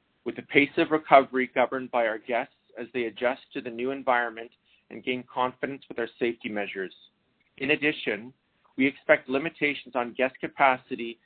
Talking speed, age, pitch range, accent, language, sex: 165 wpm, 40-59, 120-135 Hz, American, English, male